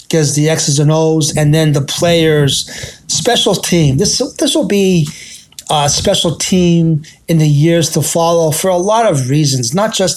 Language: English